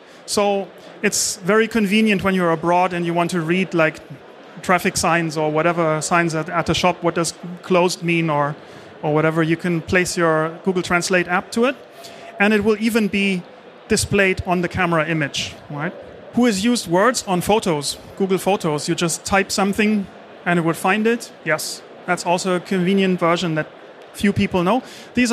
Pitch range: 170-200 Hz